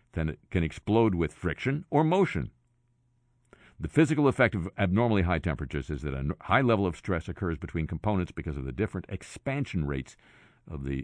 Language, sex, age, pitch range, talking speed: English, male, 50-69, 85-120 Hz, 180 wpm